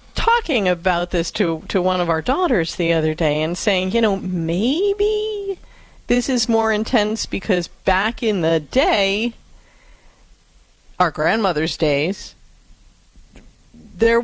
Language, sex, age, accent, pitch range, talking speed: English, female, 40-59, American, 170-225 Hz, 125 wpm